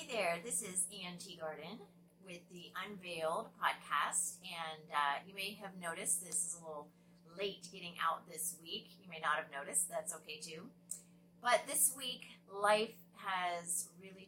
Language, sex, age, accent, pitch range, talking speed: English, female, 30-49, American, 155-185 Hz, 165 wpm